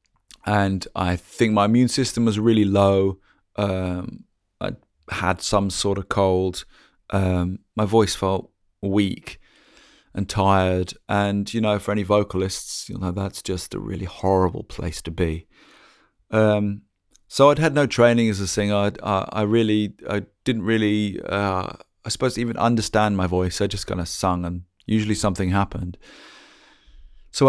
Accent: British